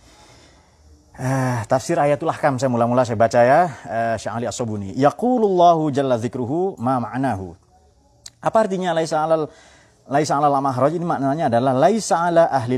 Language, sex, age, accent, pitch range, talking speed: Indonesian, male, 30-49, native, 100-140 Hz, 145 wpm